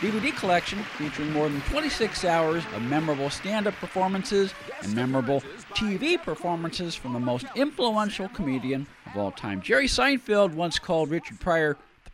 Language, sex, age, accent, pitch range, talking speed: English, male, 50-69, American, 135-200 Hz, 150 wpm